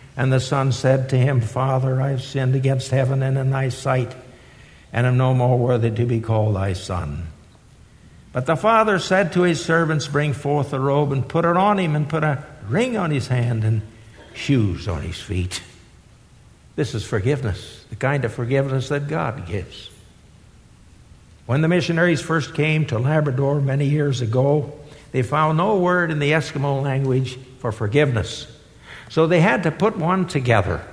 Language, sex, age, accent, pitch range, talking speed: English, male, 60-79, American, 125-170 Hz, 175 wpm